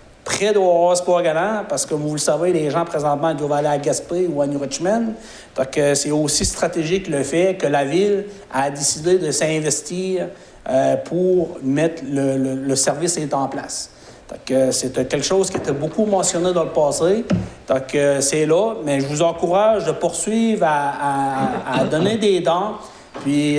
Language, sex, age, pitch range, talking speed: French, male, 60-79, 145-185 Hz, 185 wpm